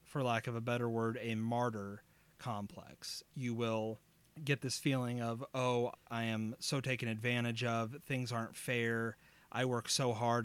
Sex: male